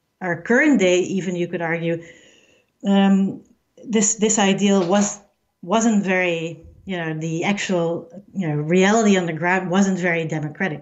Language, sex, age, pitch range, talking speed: English, female, 40-59, 175-215 Hz, 150 wpm